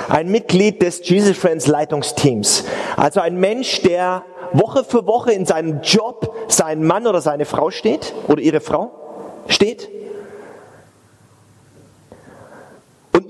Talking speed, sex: 115 wpm, male